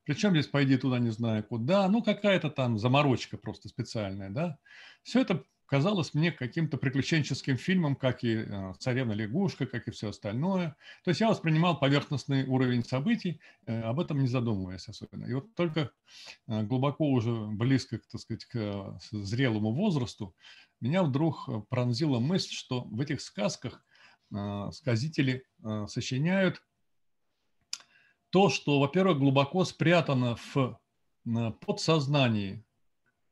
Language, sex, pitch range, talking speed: Russian, male, 115-145 Hz, 125 wpm